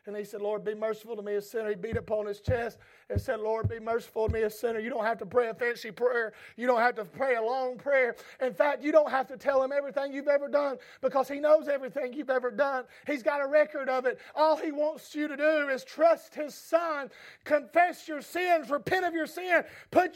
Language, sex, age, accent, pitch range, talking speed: English, male, 40-59, American, 205-275 Hz, 245 wpm